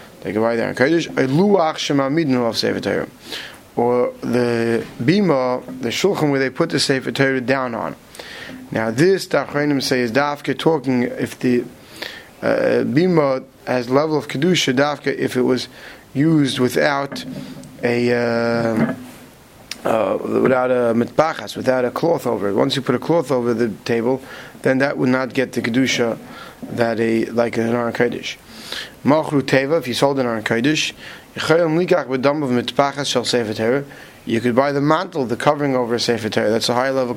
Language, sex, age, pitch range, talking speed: English, male, 30-49, 120-145 Hz, 140 wpm